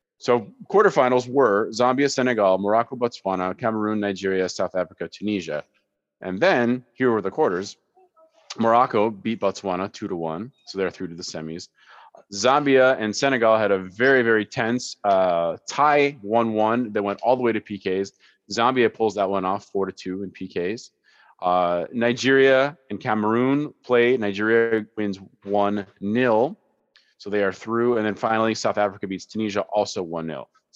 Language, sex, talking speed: English, male, 155 wpm